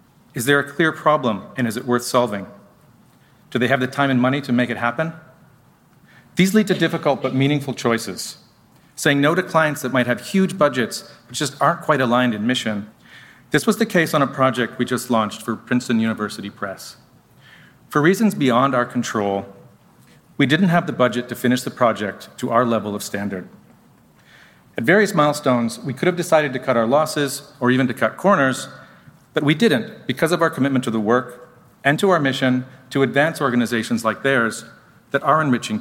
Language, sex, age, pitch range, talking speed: English, male, 40-59, 120-150 Hz, 195 wpm